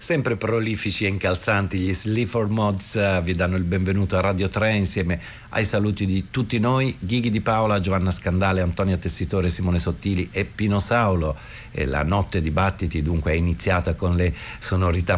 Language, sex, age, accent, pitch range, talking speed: Italian, male, 50-69, native, 85-110 Hz, 165 wpm